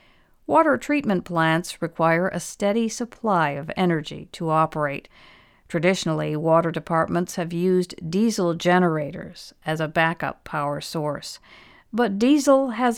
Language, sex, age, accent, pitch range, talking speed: English, female, 50-69, American, 160-210 Hz, 120 wpm